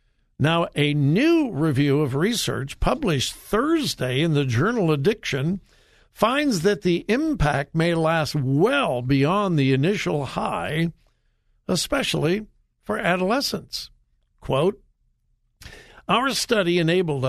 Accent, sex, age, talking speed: American, male, 60-79, 105 wpm